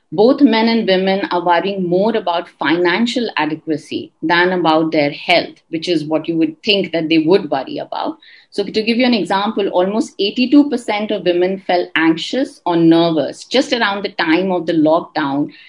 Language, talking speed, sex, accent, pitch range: English, 175 wpm, female, Indian, 175-230 Hz